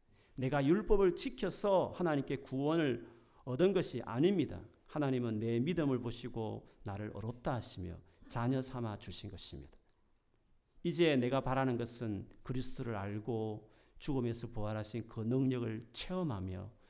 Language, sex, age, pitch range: Korean, male, 40-59, 110-155 Hz